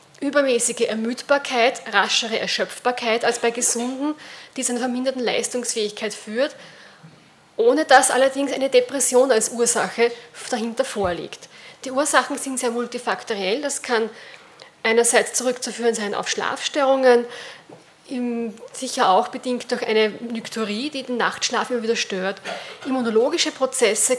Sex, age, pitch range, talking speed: female, 30-49, 225-260 Hz, 125 wpm